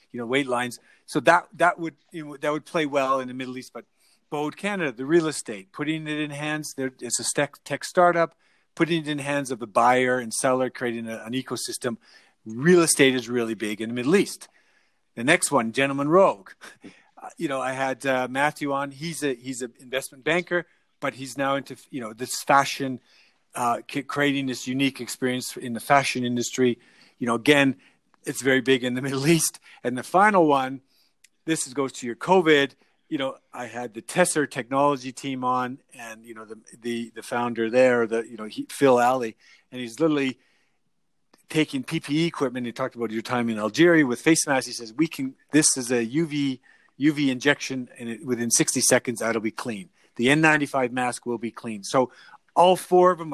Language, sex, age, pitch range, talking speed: English, male, 40-59, 125-150 Hz, 200 wpm